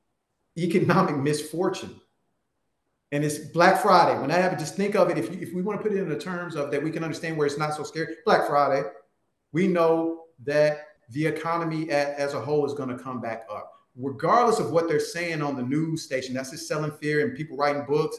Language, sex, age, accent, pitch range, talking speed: English, male, 40-59, American, 145-180 Hz, 225 wpm